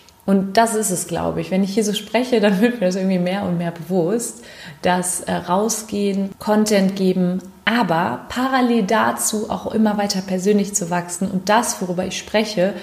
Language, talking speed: German, 180 wpm